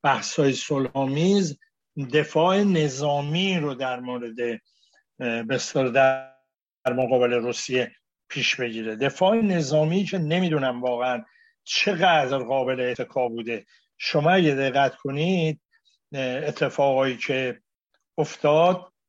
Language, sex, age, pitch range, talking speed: Persian, male, 60-79, 130-180 Hz, 90 wpm